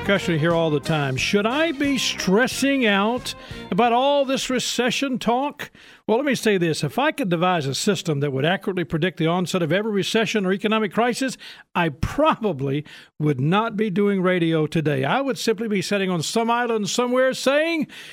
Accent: American